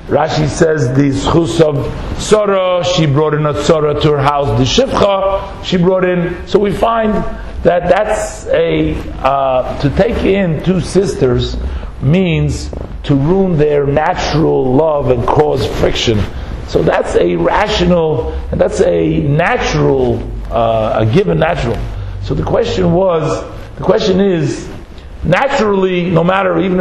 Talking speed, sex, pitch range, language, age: 140 wpm, male, 130-180 Hz, English, 50-69